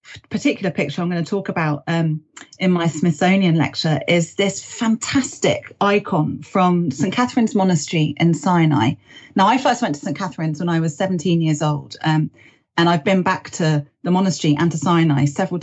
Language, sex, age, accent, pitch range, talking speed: English, female, 30-49, British, 165-220 Hz, 180 wpm